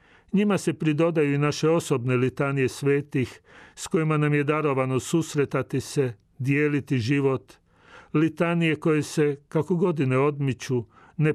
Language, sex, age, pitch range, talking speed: Croatian, male, 40-59, 125-155 Hz, 125 wpm